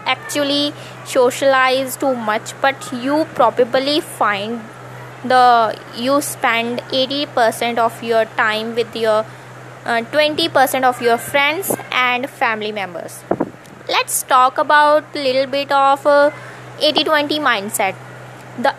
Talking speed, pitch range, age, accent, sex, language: 110 wpm, 235-285 Hz, 20-39, native, female, Hindi